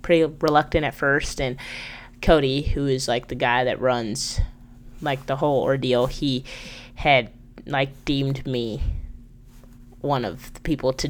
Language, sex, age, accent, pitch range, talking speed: English, female, 20-39, American, 125-150 Hz, 140 wpm